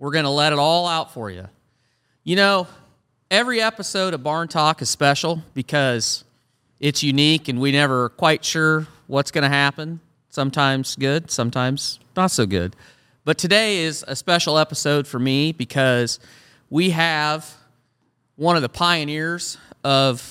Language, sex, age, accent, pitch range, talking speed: English, male, 40-59, American, 125-160 Hz, 155 wpm